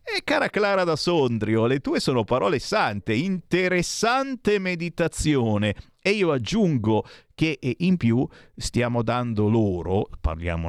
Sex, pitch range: male, 100-160 Hz